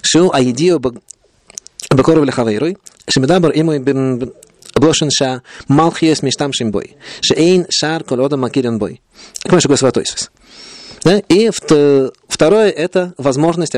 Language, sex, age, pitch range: Russian, male, 30-49, 120-160 Hz